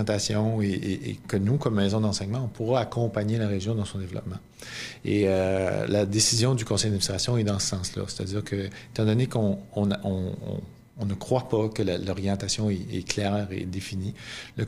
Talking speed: 190 wpm